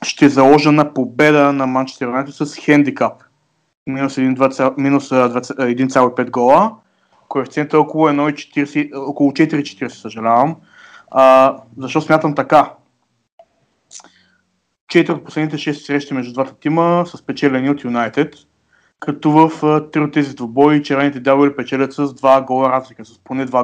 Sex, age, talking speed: male, 20-39, 125 wpm